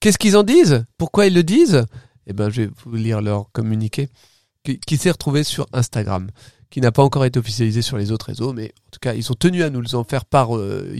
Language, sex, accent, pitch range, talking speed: French, male, French, 120-155 Hz, 245 wpm